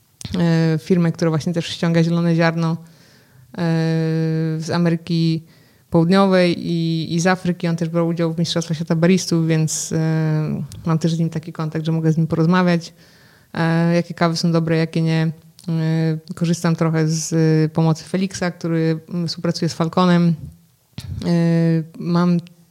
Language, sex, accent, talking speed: Polish, female, native, 130 wpm